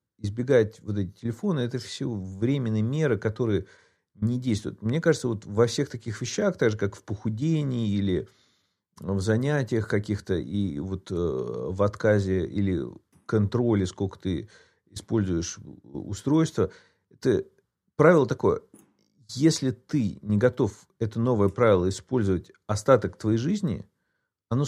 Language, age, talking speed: Russian, 50-69, 125 wpm